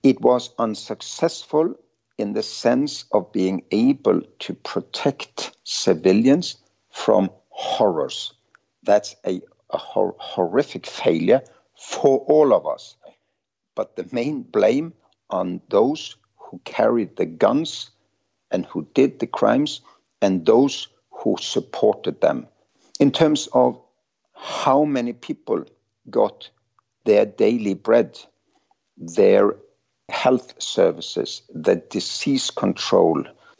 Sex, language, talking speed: male, English, 105 wpm